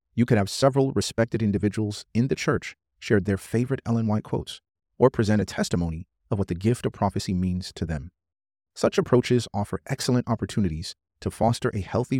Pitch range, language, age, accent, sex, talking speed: 90-115 Hz, English, 30-49, American, male, 180 wpm